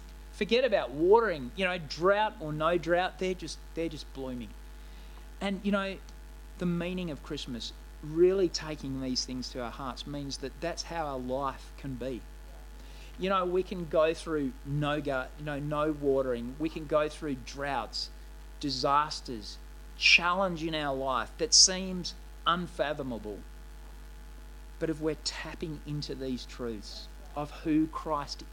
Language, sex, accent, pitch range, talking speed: English, male, Australian, 130-170 Hz, 145 wpm